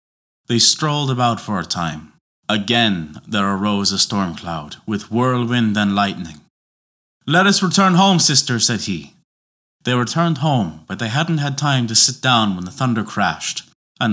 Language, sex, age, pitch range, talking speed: English, male, 30-49, 105-145 Hz, 165 wpm